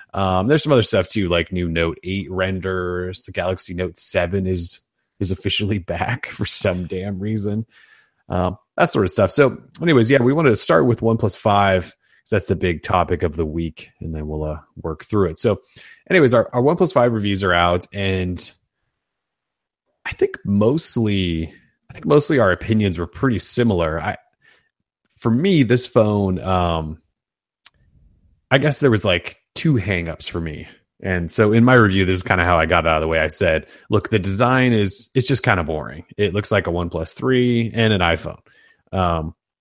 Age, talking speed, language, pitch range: 30-49, 190 wpm, English, 85-110 Hz